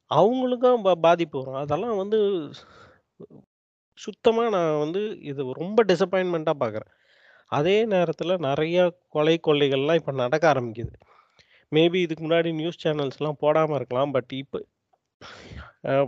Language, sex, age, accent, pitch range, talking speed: Tamil, male, 30-49, native, 145-185 Hz, 110 wpm